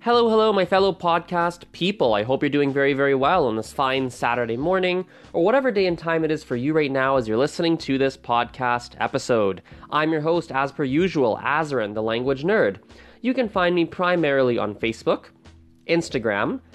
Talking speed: 195 wpm